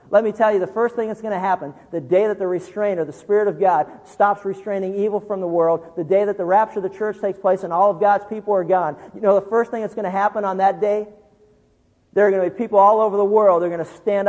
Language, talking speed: English, 290 wpm